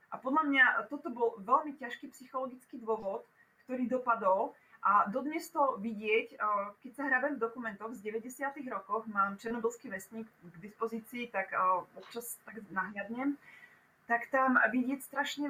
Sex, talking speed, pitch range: female, 130 wpm, 215-265 Hz